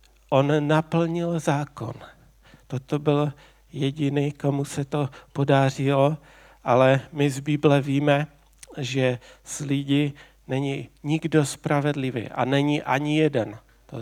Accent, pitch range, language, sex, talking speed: native, 130-150 Hz, Czech, male, 110 wpm